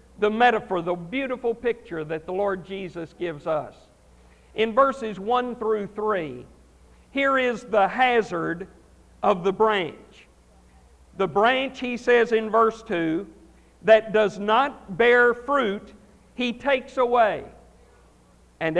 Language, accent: English, American